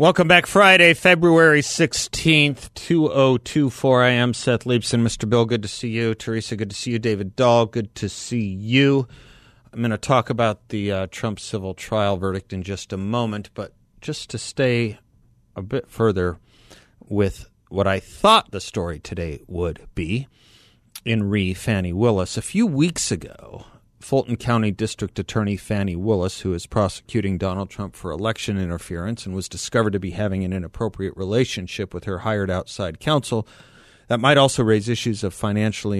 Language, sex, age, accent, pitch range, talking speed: English, male, 40-59, American, 100-120 Hz, 165 wpm